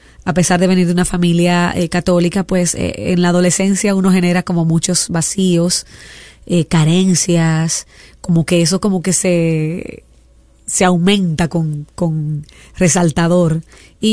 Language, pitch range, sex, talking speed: Spanish, 170-190 Hz, female, 140 wpm